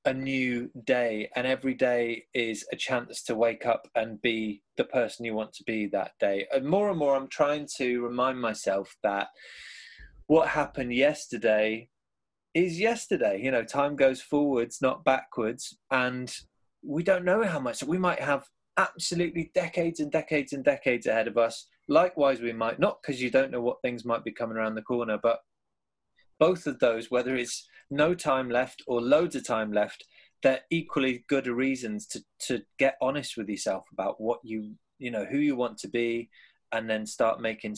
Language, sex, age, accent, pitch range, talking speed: English, male, 20-39, British, 115-135 Hz, 185 wpm